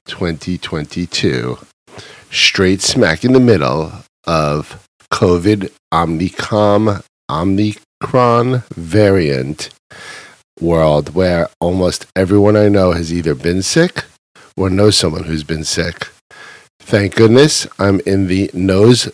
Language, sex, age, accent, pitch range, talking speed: English, male, 50-69, American, 80-105 Hz, 105 wpm